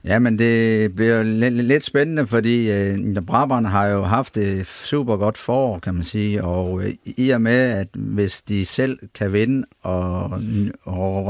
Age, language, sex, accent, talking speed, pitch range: 50-69, Danish, male, native, 160 wpm, 100-115 Hz